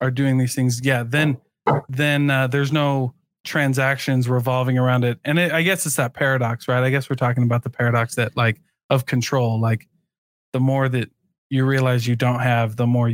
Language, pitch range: English, 125-150 Hz